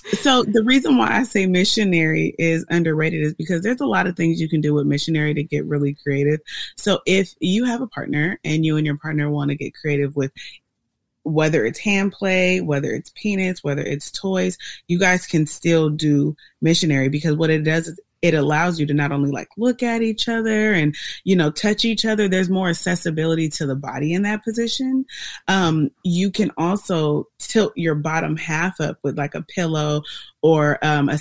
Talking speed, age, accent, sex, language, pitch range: 200 wpm, 30-49, American, female, English, 150-185 Hz